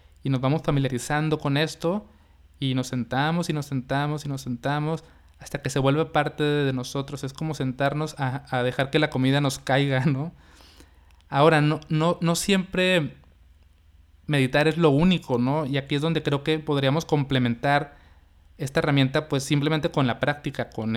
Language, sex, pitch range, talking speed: Spanish, male, 120-150 Hz, 170 wpm